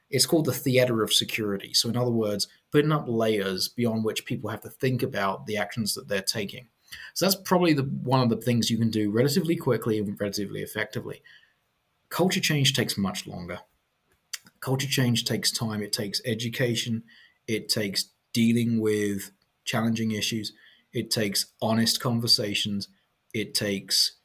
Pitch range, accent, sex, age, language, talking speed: 105-135 Hz, British, male, 30-49, English, 160 wpm